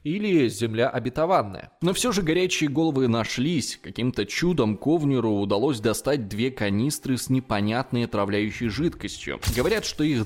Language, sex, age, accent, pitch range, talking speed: Russian, male, 20-39, native, 115-160 Hz, 135 wpm